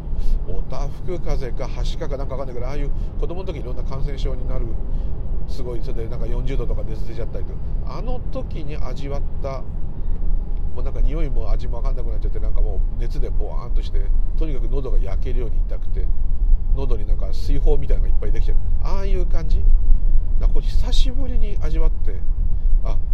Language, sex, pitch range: Japanese, male, 80-105 Hz